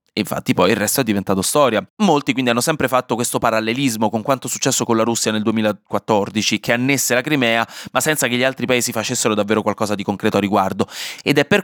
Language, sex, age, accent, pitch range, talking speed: Italian, male, 20-39, native, 115-155 Hz, 225 wpm